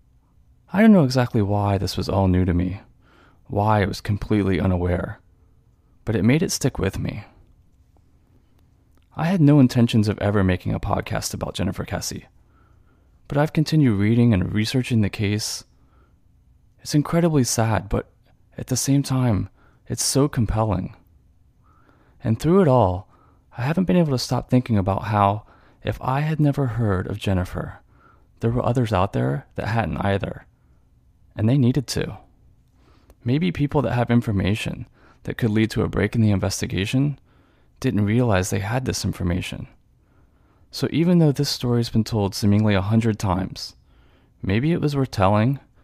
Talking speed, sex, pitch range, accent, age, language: 160 wpm, male, 95-125 Hz, American, 30-49, English